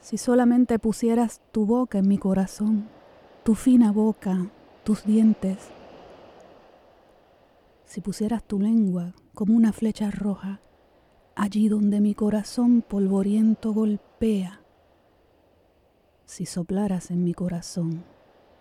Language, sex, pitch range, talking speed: Spanish, female, 190-220 Hz, 105 wpm